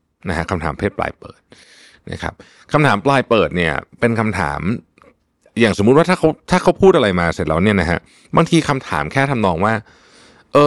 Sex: male